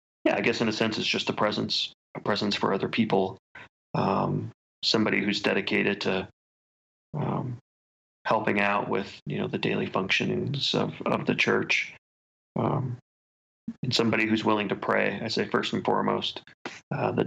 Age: 30-49